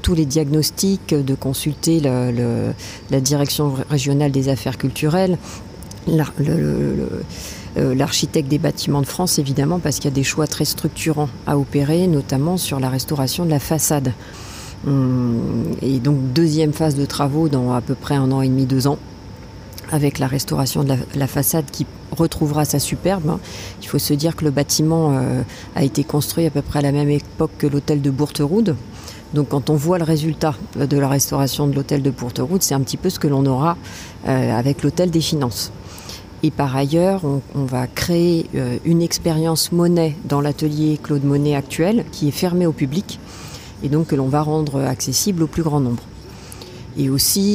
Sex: female